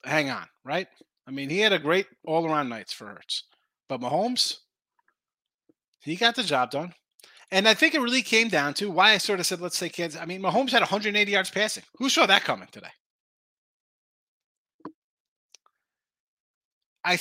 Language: English